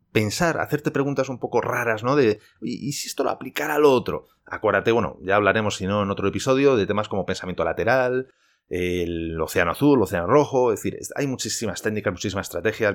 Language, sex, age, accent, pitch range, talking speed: Spanish, male, 30-49, Spanish, 95-130 Hz, 200 wpm